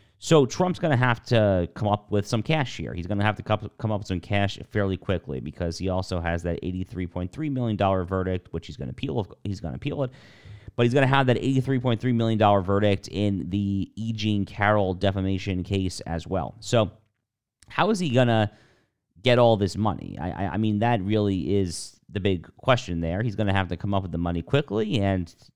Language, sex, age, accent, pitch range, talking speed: English, male, 30-49, American, 90-115 Hz, 205 wpm